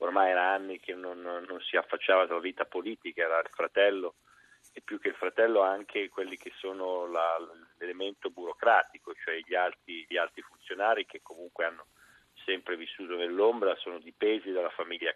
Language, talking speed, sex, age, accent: Italian, 165 wpm, male, 40-59, native